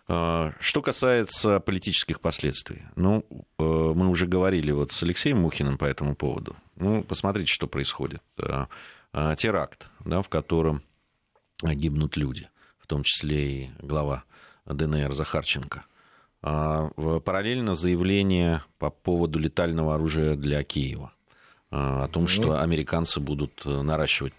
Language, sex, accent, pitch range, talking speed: Russian, male, native, 70-85 Hz, 115 wpm